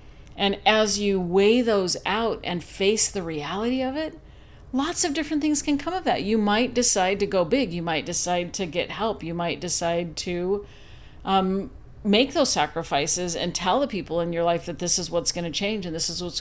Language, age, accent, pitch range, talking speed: English, 50-69, American, 170-210 Hz, 210 wpm